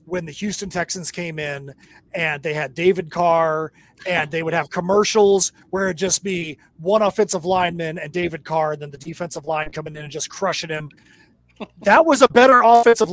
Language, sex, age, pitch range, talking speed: English, male, 30-49, 170-230 Hz, 190 wpm